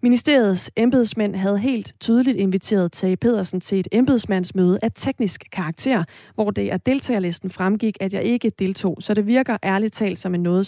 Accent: native